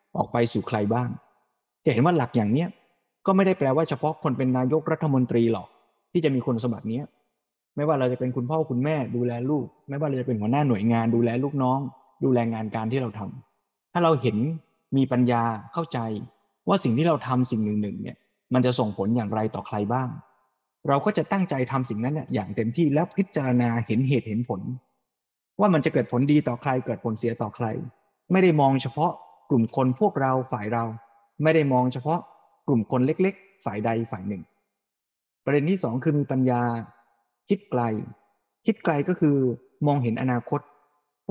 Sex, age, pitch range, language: male, 20-39, 120-155 Hz, Thai